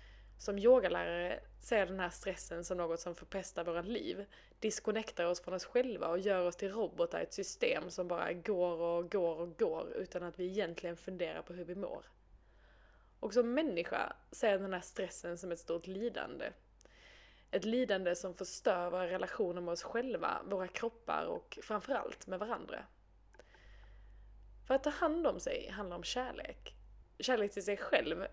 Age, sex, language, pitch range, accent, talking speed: 20-39, female, Swedish, 180-255 Hz, native, 175 wpm